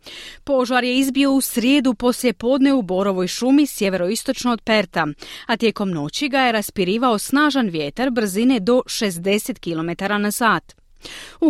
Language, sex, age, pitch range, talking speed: Croatian, female, 30-49, 190-260 Hz, 140 wpm